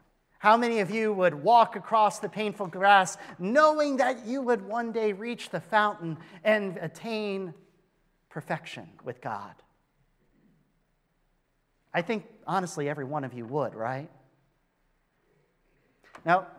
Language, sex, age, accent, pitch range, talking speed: English, male, 40-59, American, 140-215 Hz, 125 wpm